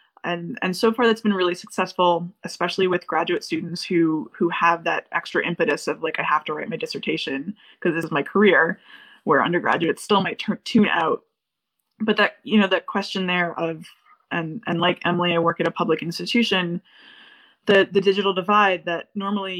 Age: 20-39